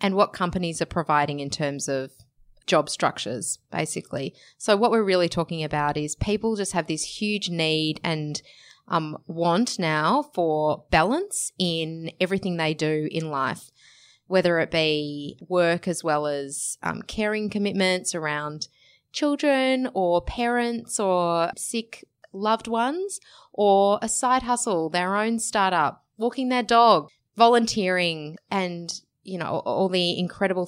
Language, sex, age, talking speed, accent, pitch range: English, female, 20-39, 140 wpm, Australian, 155-205 Hz